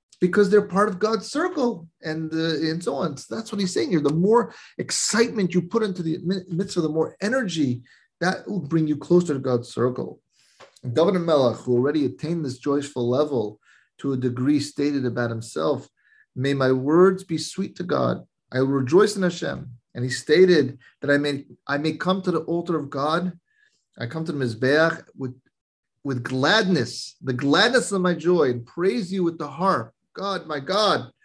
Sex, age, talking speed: male, 30-49, 190 wpm